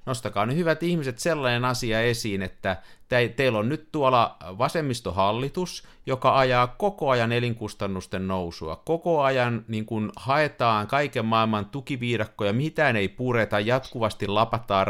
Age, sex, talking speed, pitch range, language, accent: 50-69, male, 115 wpm, 100-135 Hz, Finnish, native